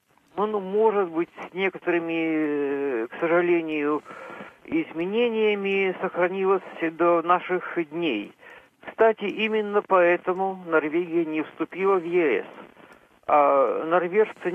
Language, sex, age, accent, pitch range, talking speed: Russian, male, 50-69, native, 165-205 Hz, 90 wpm